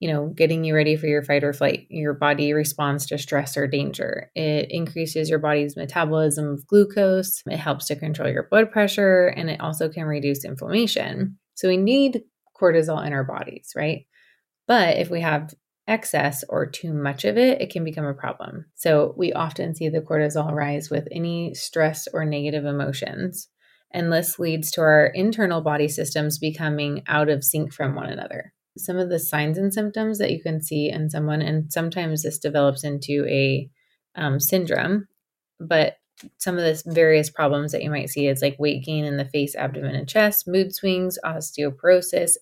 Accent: American